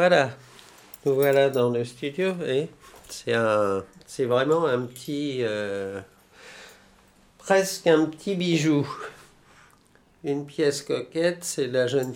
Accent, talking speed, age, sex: French, 105 wpm, 50-69, male